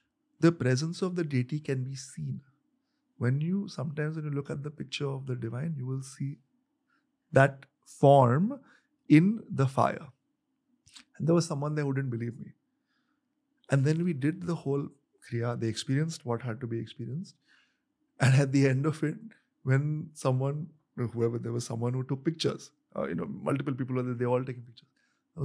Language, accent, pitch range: English, Indian, 130-175 Hz